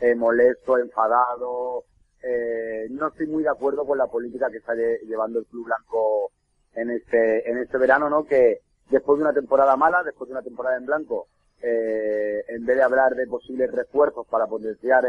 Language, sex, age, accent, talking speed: Spanish, male, 30-49, Spanish, 185 wpm